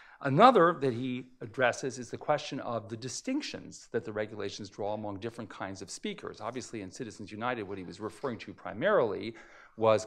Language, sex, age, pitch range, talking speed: English, male, 40-59, 105-135 Hz, 180 wpm